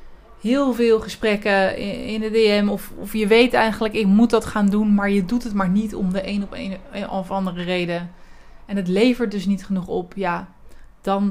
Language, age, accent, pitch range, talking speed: Dutch, 20-39, Dutch, 180-220 Hz, 220 wpm